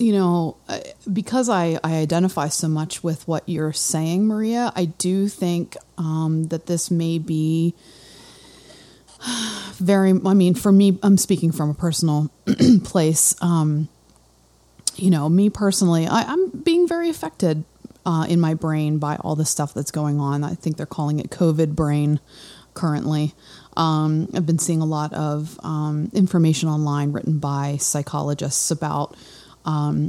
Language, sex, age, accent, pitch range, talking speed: English, female, 30-49, American, 155-185 Hz, 150 wpm